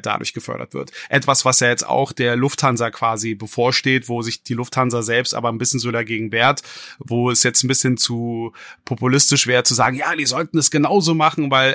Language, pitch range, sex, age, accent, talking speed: German, 120-145 Hz, male, 30-49, German, 205 wpm